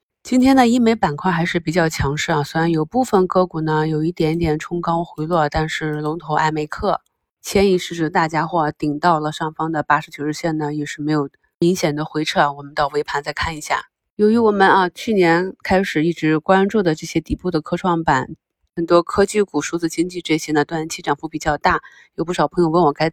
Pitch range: 155-185 Hz